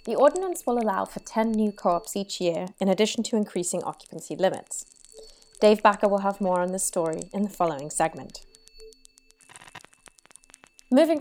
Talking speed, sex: 155 wpm, female